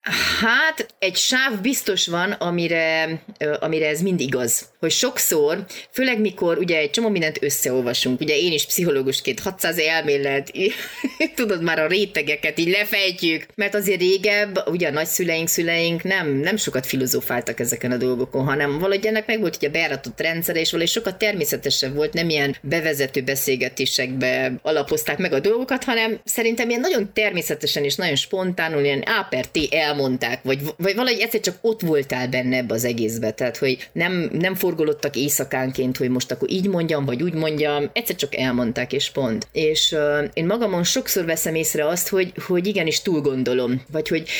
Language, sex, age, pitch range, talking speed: Hungarian, female, 30-49, 140-190 Hz, 165 wpm